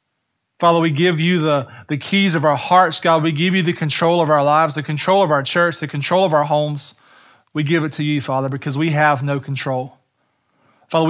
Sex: male